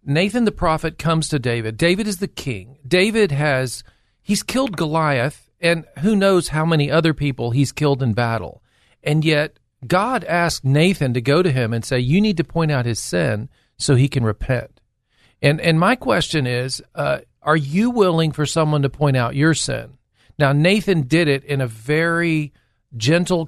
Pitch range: 125-160 Hz